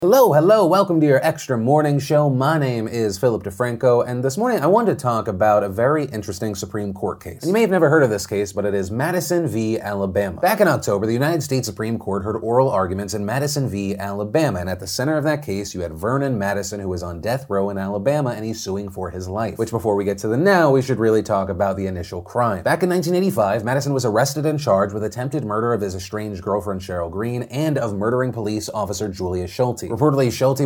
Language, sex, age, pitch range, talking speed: English, male, 30-49, 100-130 Hz, 240 wpm